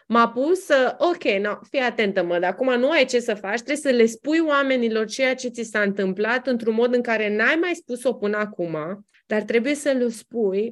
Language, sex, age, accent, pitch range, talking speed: Romanian, female, 20-39, native, 195-245 Hz, 215 wpm